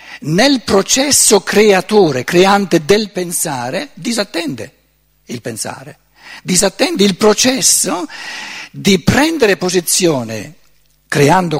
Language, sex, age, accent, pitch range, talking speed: Italian, male, 60-79, native, 170-220 Hz, 85 wpm